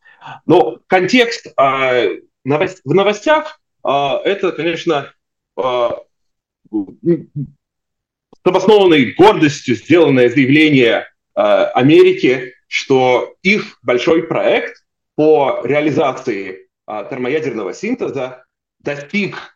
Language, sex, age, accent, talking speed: Russian, male, 30-49, native, 85 wpm